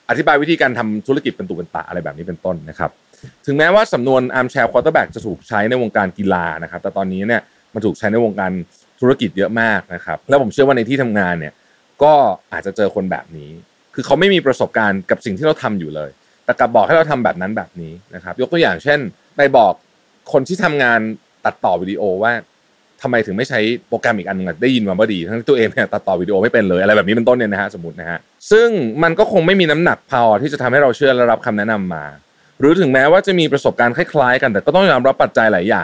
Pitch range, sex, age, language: 95-150 Hz, male, 30-49, Thai